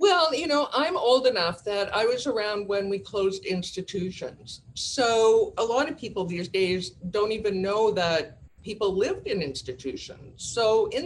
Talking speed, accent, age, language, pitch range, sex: 170 wpm, American, 50-69, English, 175-230 Hz, female